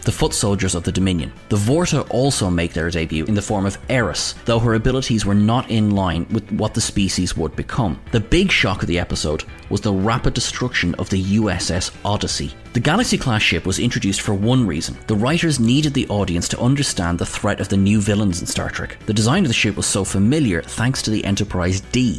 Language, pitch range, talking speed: English, 90-120 Hz, 215 wpm